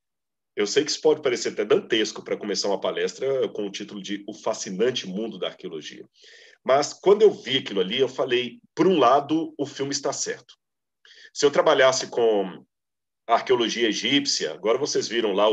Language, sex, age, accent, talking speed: Portuguese, male, 40-59, Brazilian, 180 wpm